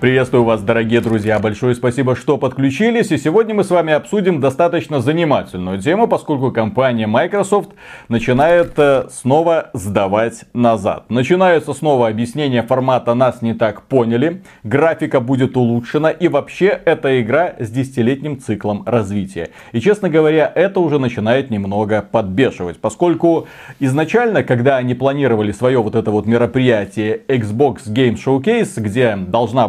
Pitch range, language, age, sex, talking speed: 115-155 Hz, Russian, 30-49, male, 135 wpm